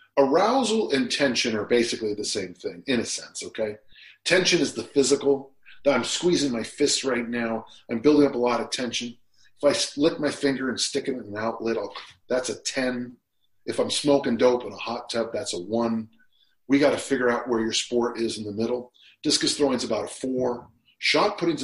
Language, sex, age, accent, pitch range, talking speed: English, male, 40-59, American, 110-140 Hz, 210 wpm